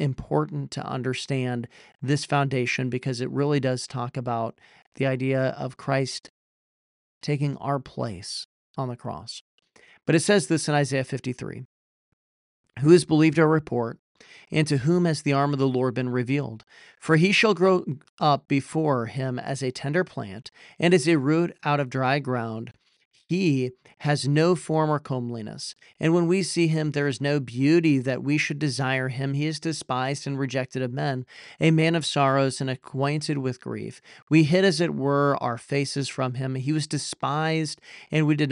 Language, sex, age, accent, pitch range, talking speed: English, male, 40-59, American, 130-160 Hz, 175 wpm